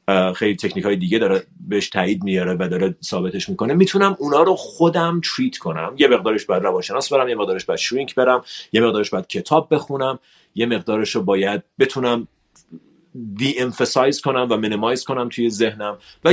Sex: male